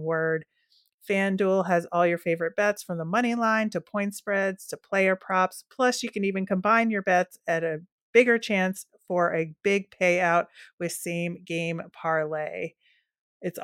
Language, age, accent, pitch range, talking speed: English, 30-49, American, 175-210 Hz, 165 wpm